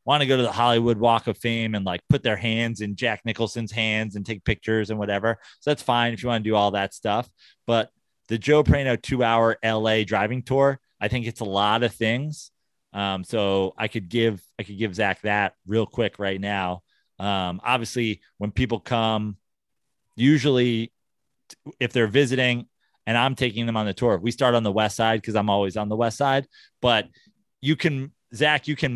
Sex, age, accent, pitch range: male, 30-49, American, 105-125 Hz